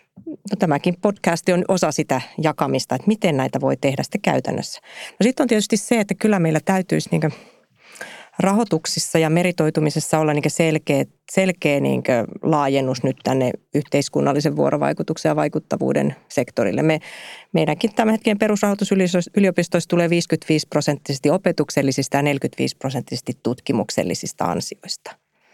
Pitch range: 150-195 Hz